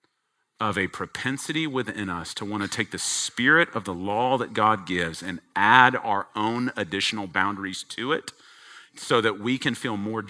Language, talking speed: English, 180 wpm